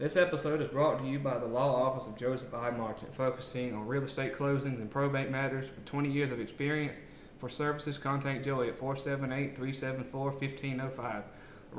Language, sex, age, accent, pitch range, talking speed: English, male, 20-39, American, 130-145 Hz, 170 wpm